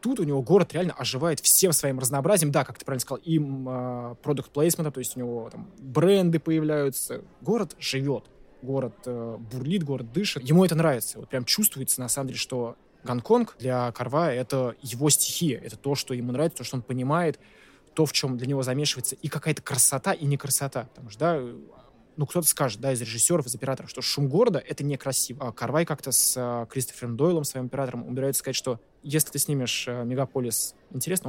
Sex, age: male, 20-39